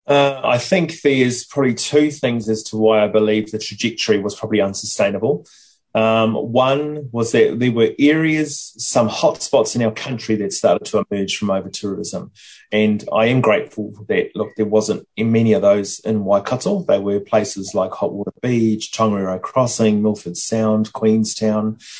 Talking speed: 170 wpm